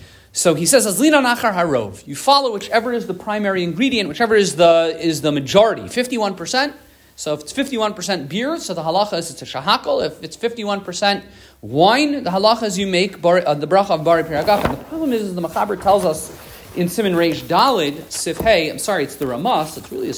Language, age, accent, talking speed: English, 40-59, American, 210 wpm